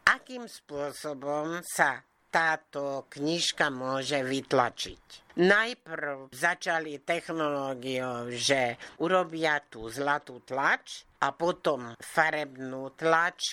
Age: 60-79